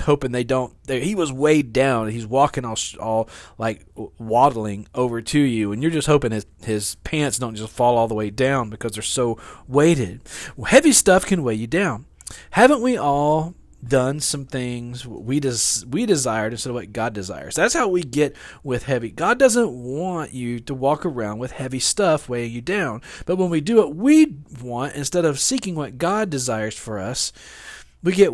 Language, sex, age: English, male, 40-59